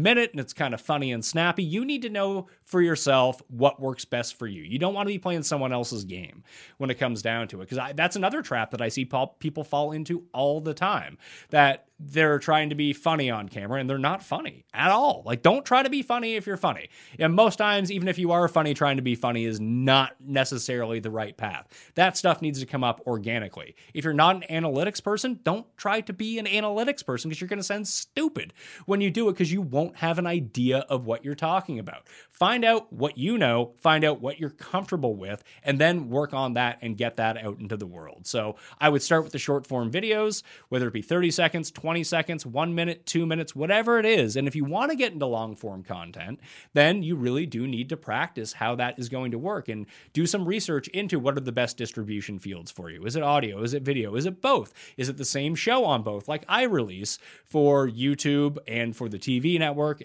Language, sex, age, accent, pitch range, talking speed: English, male, 30-49, American, 125-175 Hz, 235 wpm